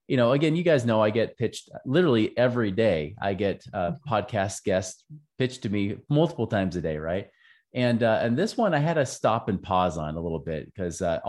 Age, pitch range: 30-49, 100-140 Hz